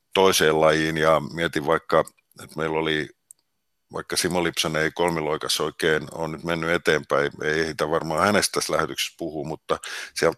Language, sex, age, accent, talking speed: Finnish, male, 50-69, native, 155 wpm